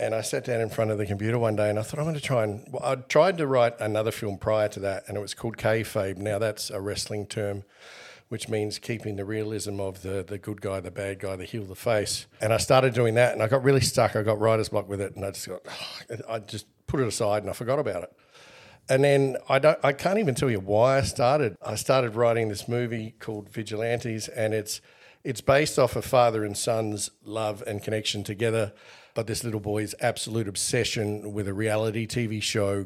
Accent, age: Australian, 50-69